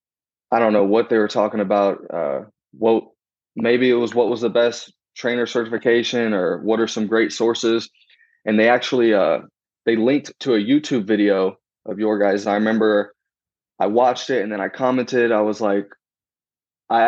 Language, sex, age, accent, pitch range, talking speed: English, male, 20-39, American, 105-120 Hz, 180 wpm